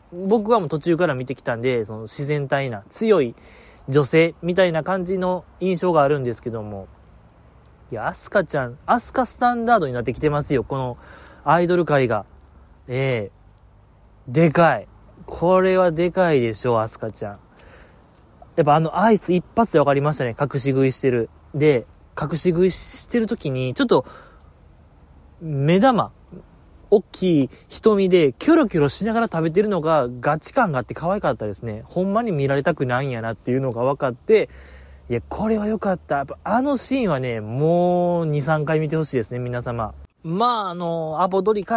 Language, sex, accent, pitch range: Japanese, male, native, 120-180 Hz